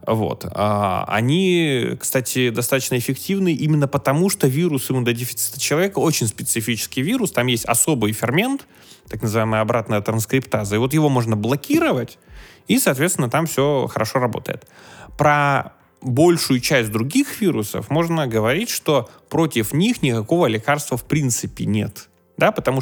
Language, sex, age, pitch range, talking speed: Russian, male, 20-39, 115-165 Hz, 135 wpm